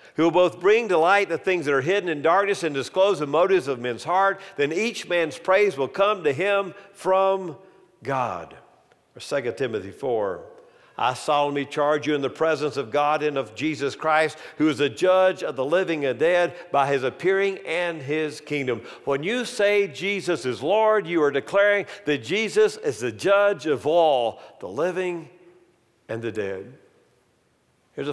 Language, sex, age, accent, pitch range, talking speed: English, male, 50-69, American, 125-180 Hz, 180 wpm